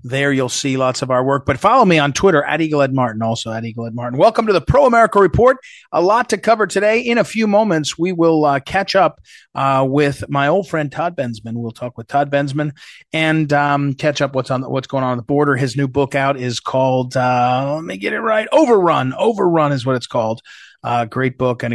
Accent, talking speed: American, 240 wpm